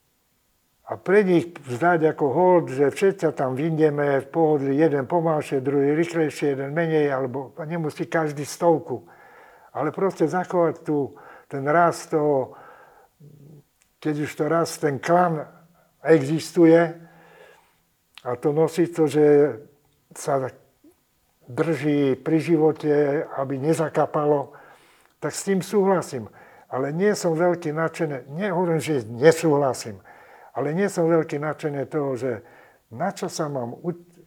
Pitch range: 140-170 Hz